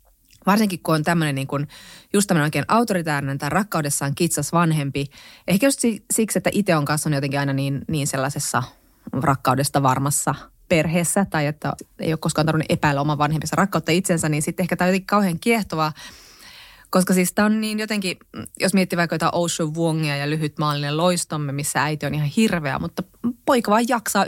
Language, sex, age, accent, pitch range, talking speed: Finnish, female, 30-49, native, 145-185 Hz, 165 wpm